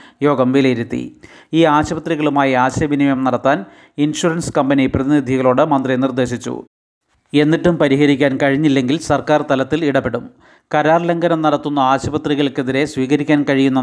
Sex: male